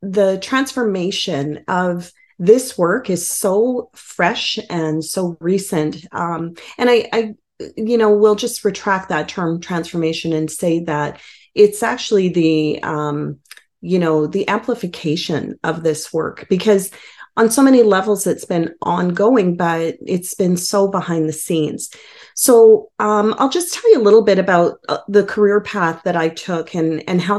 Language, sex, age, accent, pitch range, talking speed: English, female, 30-49, American, 165-210 Hz, 160 wpm